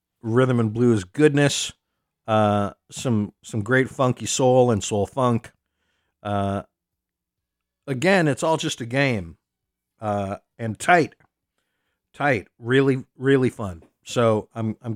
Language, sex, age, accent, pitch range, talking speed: English, male, 50-69, American, 100-125 Hz, 120 wpm